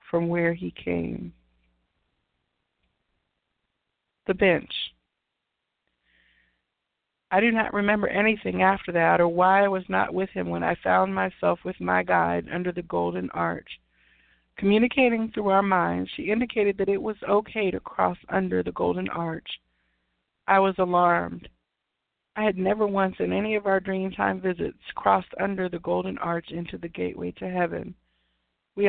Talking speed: 150 wpm